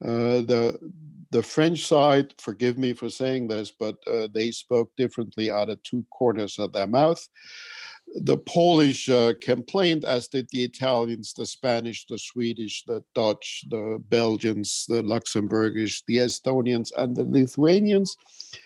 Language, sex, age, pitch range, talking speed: English, male, 60-79, 115-150 Hz, 145 wpm